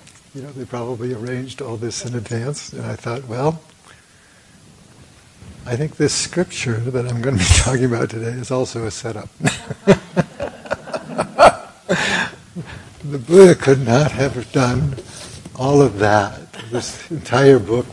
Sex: male